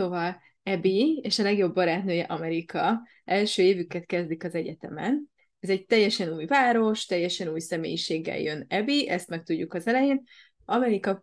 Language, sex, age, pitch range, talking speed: Hungarian, female, 20-39, 165-210 Hz, 150 wpm